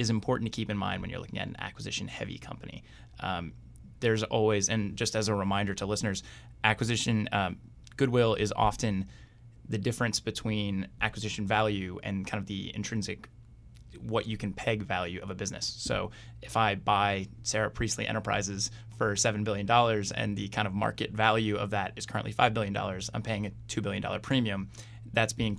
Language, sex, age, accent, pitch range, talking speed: English, male, 20-39, American, 105-115 Hz, 185 wpm